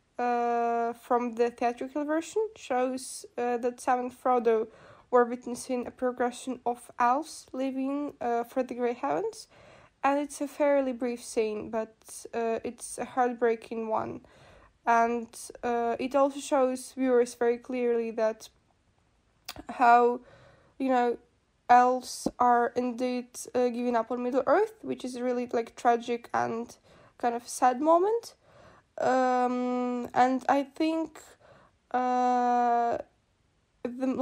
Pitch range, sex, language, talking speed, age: 235-255 Hz, female, German, 125 wpm, 20-39